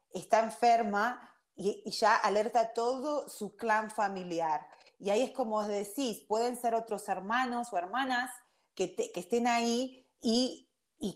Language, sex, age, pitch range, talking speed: Spanish, female, 30-49, 195-250 Hz, 155 wpm